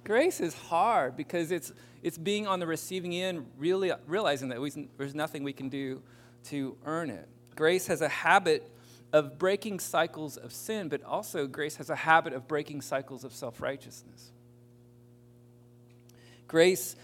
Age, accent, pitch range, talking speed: 40-59, American, 135-205 Hz, 150 wpm